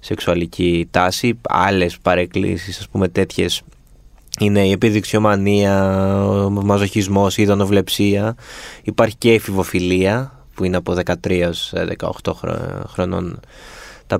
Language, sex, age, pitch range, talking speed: Greek, male, 20-39, 95-125 Hz, 95 wpm